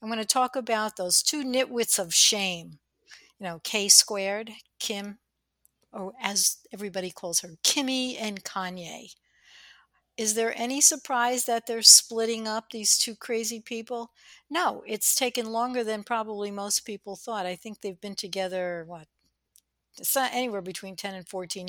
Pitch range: 185-230 Hz